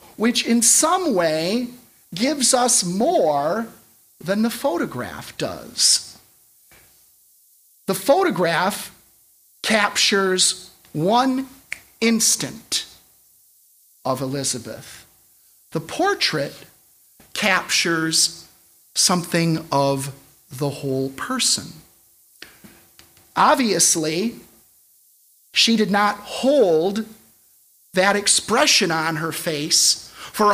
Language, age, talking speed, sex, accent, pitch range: English, 40-59, 75 wpm, male, American, 160-235 Hz